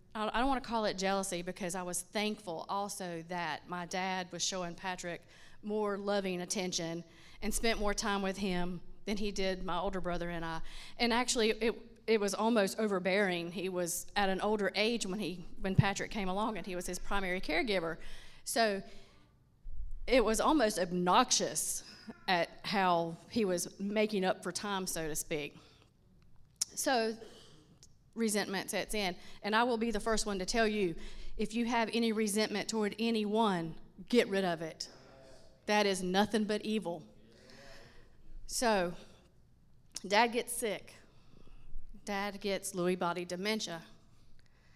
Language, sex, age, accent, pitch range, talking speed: English, female, 30-49, American, 180-215 Hz, 155 wpm